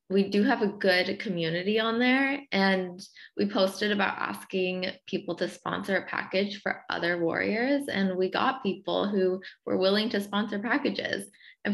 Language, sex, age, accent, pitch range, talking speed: English, female, 20-39, American, 185-225 Hz, 165 wpm